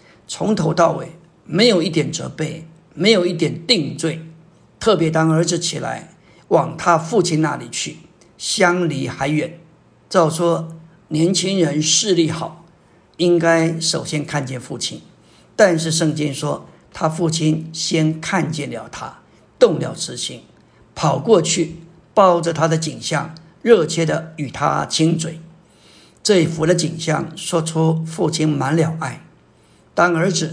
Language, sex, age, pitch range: Chinese, male, 50-69, 160-175 Hz